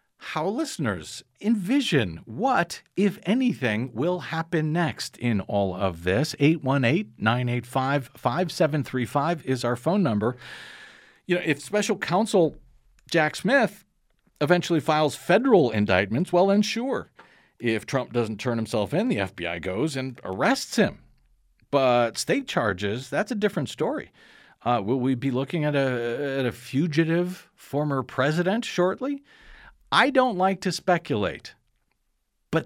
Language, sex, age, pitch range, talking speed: English, male, 50-69, 120-175 Hz, 130 wpm